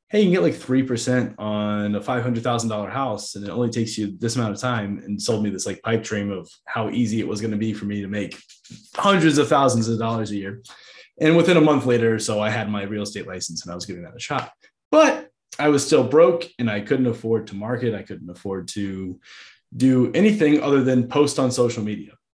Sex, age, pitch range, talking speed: male, 20-39, 105-140 Hz, 235 wpm